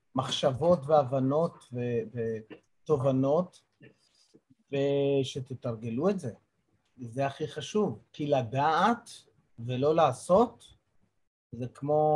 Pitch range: 115-150 Hz